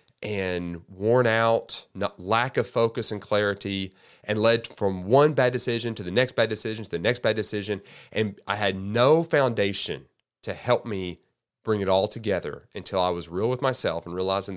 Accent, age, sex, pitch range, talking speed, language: American, 30-49, male, 95-115 Hz, 185 wpm, English